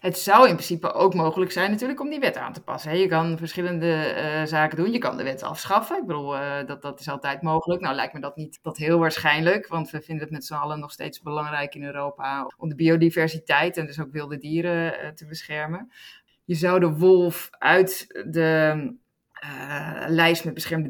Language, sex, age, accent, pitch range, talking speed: Dutch, female, 20-39, Dutch, 145-175 Hz, 205 wpm